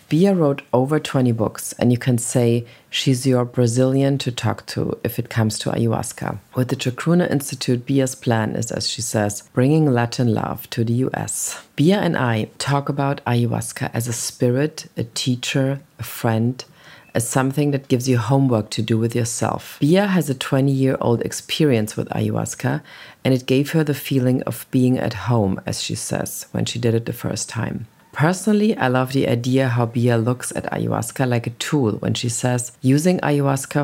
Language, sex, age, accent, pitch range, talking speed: English, female, 40-59, German, 120-140 Hz, 185 wpm